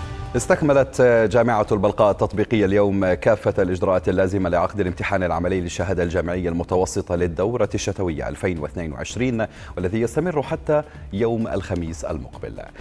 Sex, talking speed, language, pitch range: male, 110 wpm, Arabic, 85-105 Hz